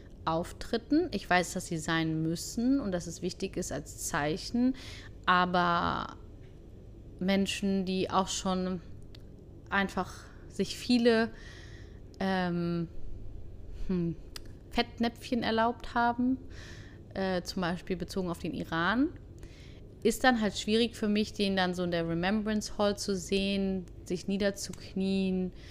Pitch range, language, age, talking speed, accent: 165-210 Hz, German, 30-49, 115 wpm, German